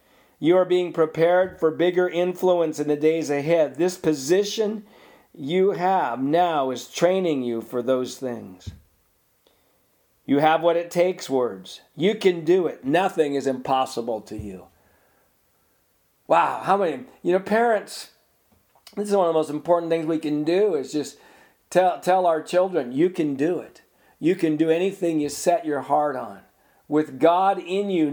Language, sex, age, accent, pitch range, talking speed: English, male, 50-69, American, 135-180 Hz, 165 wpm